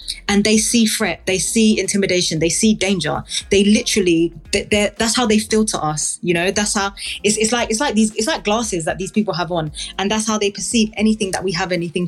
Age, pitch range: 20-39, 160-195 Hz